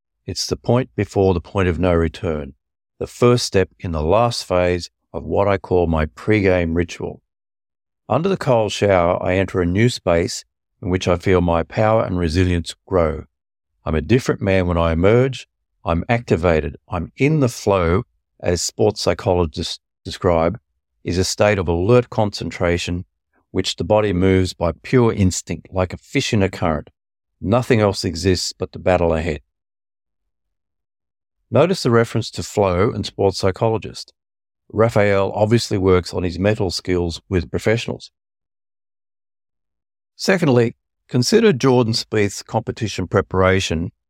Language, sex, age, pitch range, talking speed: English, male, 50-69, 85-110 Hz, 145 wpm